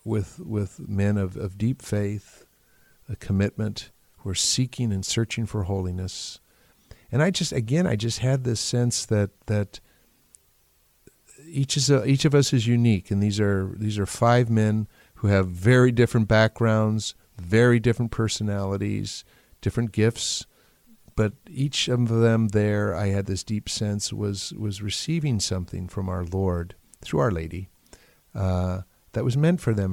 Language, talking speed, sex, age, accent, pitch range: English, 155 wpm, male, 50-69, American, 95-125 Hz